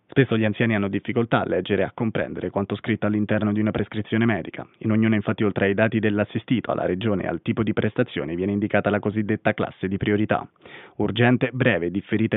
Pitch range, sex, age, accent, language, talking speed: 105-125 Hz, male, 20-39, native, Italian, 200 wpm